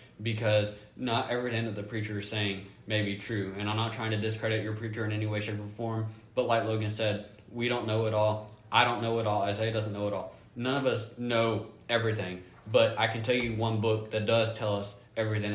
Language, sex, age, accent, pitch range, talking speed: English, male, 20-39, American, 100-110 Hz, 235 wpm